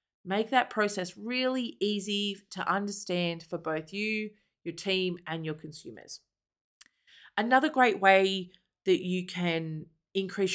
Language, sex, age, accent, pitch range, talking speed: English, female, 30-49, Australian, 170-215 Hz, 125 wpm